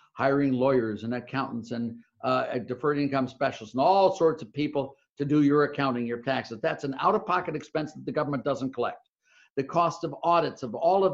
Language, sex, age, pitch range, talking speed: English, male, 50-69, 145-215 Hz, 205 wpm